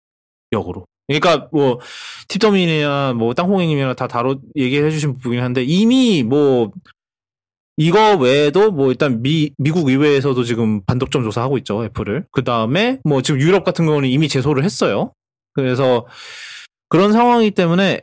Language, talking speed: English, 130 wpm